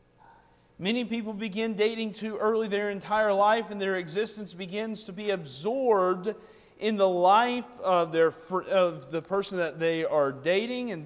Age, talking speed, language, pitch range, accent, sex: 30-49, 155 wpm, English, 185-235 Hz, American, male